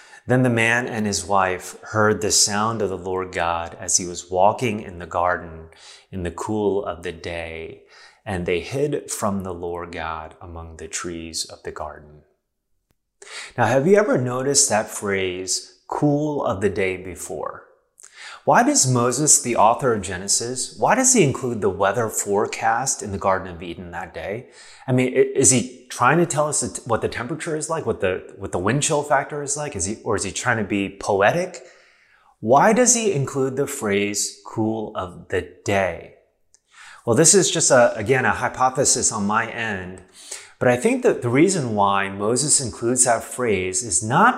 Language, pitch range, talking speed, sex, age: English, 95-135 Hz, 185 wpm, male, 30-49